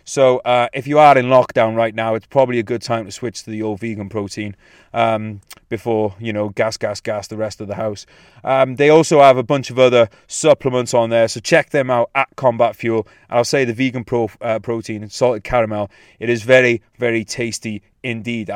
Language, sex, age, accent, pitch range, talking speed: English, male, 30-49, British, 115-150 Hz, 210 wpm